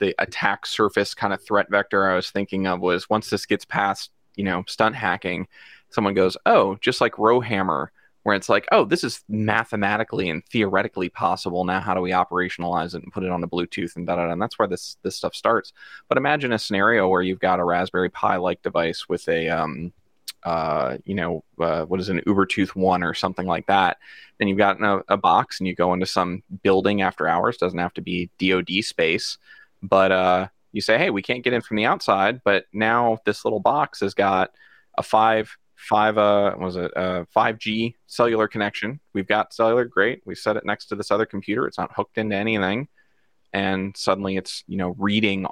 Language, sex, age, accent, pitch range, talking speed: English, male, 20-39, American, 90-105 Hz, 210 wpm